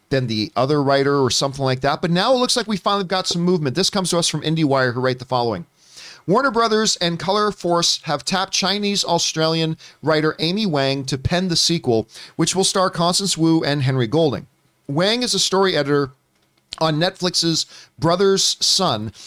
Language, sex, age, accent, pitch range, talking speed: English, male, 40-59, American, 140-185 Hz, 185 wpm